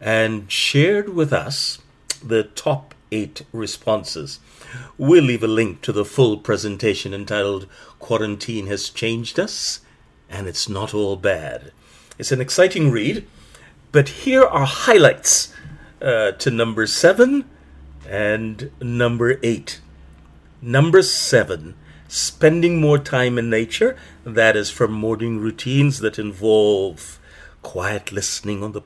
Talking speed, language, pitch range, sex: 125 wpm, English, 105-145 Hz, male